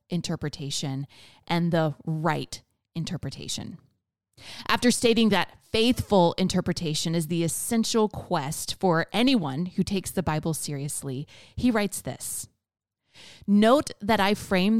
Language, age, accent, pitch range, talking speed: English, 30-49, American, 150-215 Hz, 115 wpm